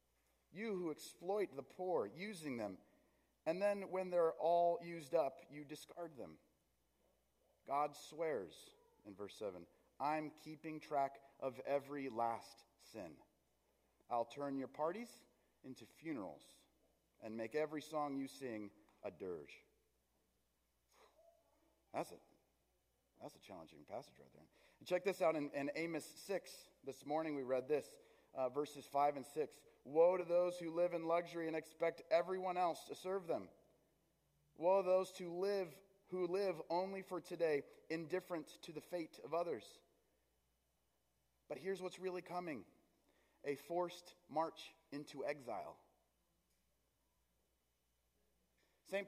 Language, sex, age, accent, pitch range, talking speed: English, male, 30-49, American, 140-195 Hz, 135 wpm